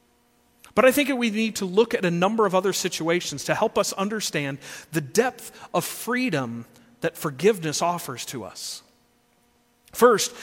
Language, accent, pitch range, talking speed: English, American, 165-225 Hz, 160 wpm